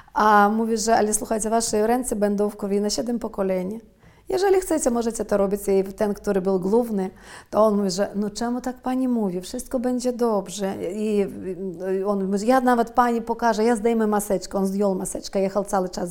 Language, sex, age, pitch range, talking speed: Polish, female, 40-59, 200-250 Hz, 195 wpm